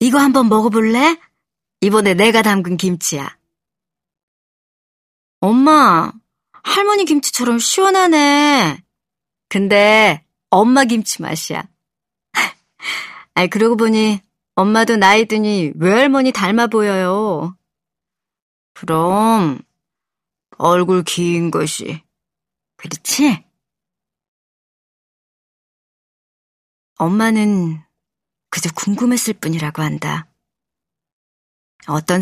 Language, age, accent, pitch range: Korean, 40-59, native, 170-225 Hz